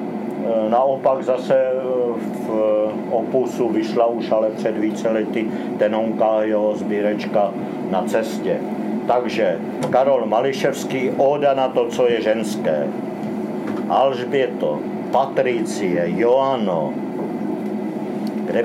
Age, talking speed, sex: 50-69, 90 wpm, male